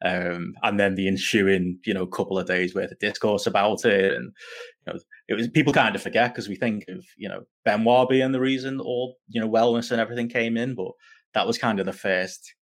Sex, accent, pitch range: male, British, 95-120 Hz